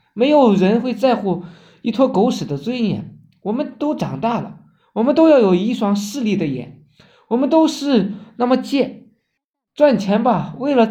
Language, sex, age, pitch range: Chinese, male, 20-39, 180-245 Hz